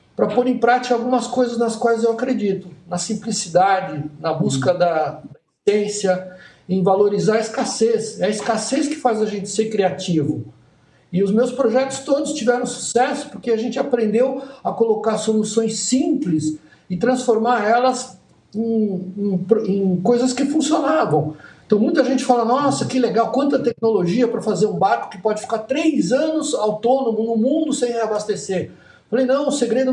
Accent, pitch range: Brazilian, 195-250 Hz